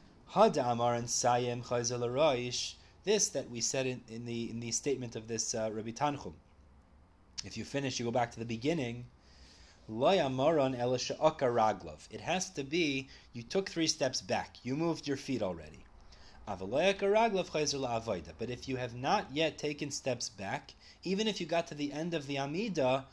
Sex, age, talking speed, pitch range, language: male, 30-49, 150 wpm, 115-160 Hz, English